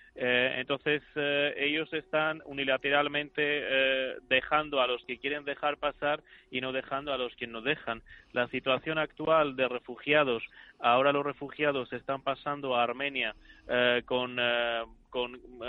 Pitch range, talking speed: 125-145 Hz, 140 wpm